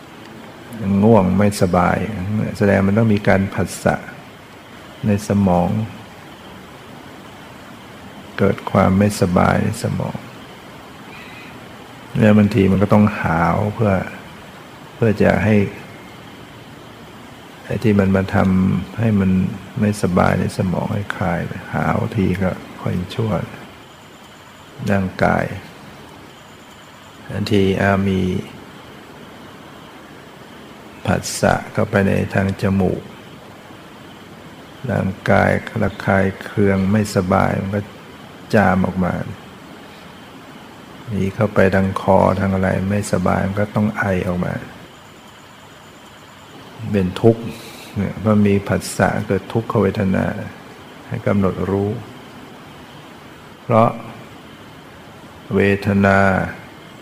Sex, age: male, 60-79